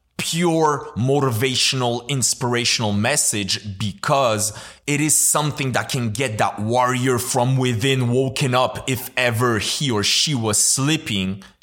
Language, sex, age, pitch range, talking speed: English, male, 30-49, 110-145 Hz, 125 wpm